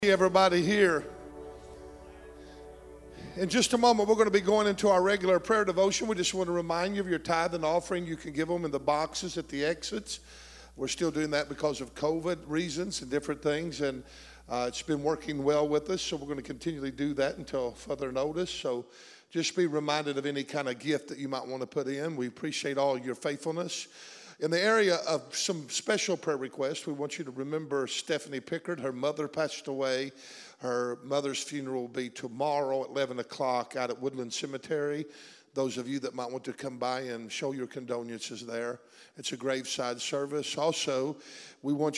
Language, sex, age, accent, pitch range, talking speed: English, male, 50-69, American, 130-160 Hz, 200 wpm